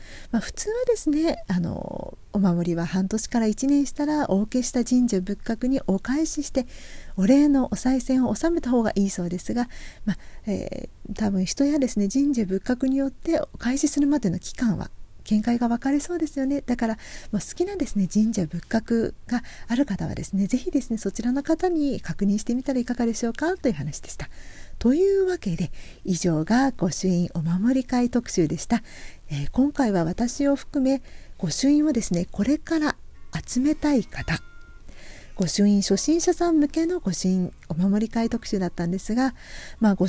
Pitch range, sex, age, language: 195-280 Hz, female, 40-59, Japanese